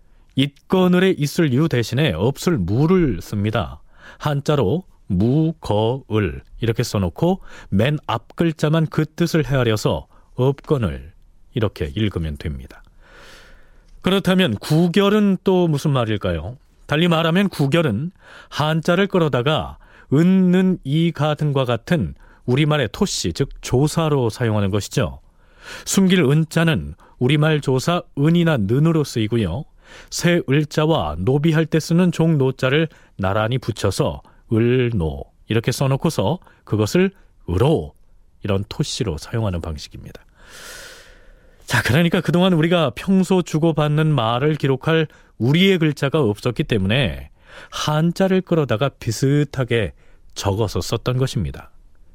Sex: male